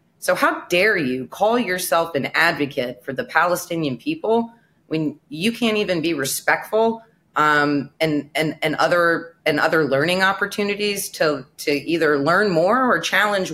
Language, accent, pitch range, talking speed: English, American, 135-175 Hz, 150 wpm